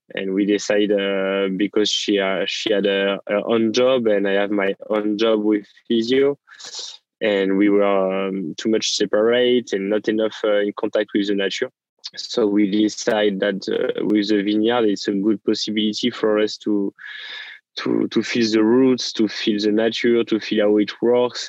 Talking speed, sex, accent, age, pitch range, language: 180 wpm, male, French, 20-39, 105-115 Hz, English